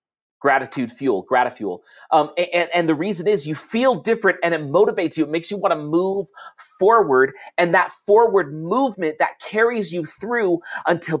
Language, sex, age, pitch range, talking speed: English, male, 30-49, 155-205 Hz, 170 wpm